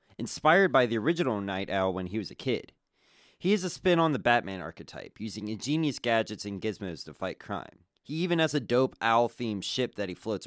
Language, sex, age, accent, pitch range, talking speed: English, male, 30-49, American, 95-135 Hz, 210 wpm